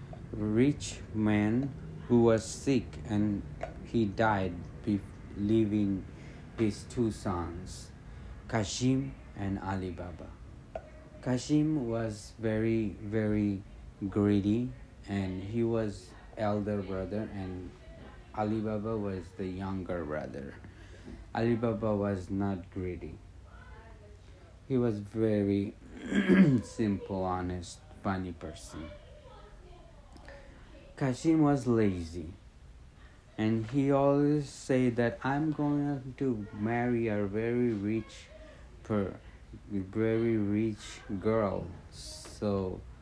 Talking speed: 90 wpm